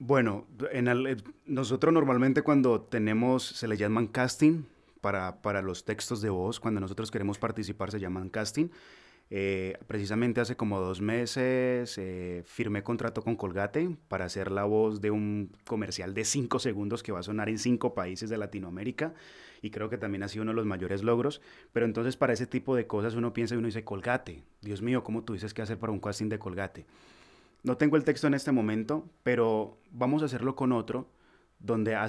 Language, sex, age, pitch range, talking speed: Spanish, male, 20-39, 100-125 Hz, 195 wpm